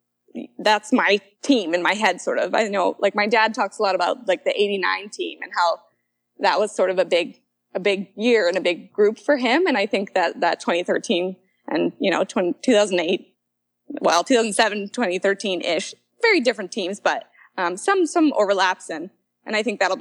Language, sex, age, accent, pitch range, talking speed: English, female, 20-39, American, 195-275 Hz, 195 wpm